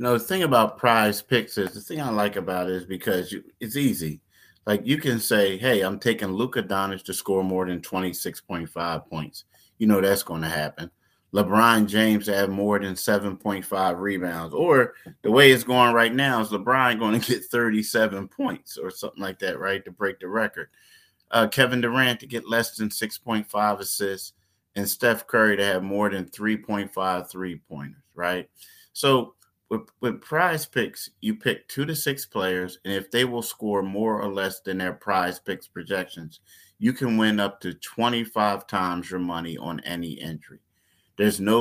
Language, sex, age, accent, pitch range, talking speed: English, male, 30-49, American, 95-115 Hz, 185 wpm